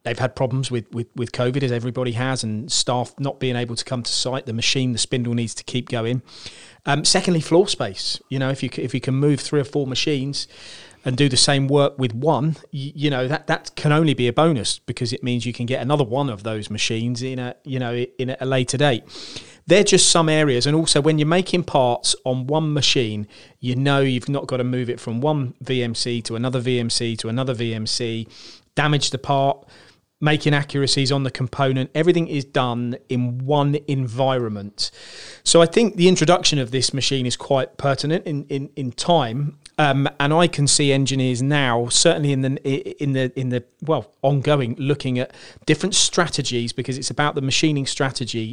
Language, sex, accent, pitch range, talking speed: English, male, British, 125-145 Hz, 205 wpm